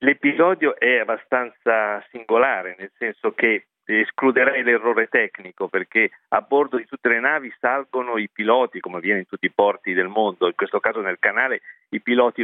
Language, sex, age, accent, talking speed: Italian, male, 50-69, native, 170 wpm